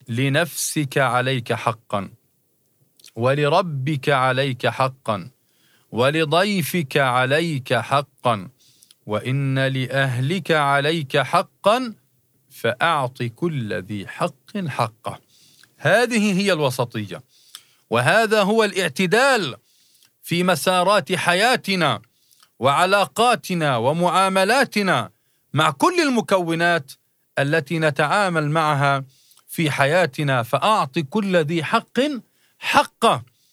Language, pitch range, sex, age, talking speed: Arabic, 130-175 Hz, male, 40-59, 75 wpm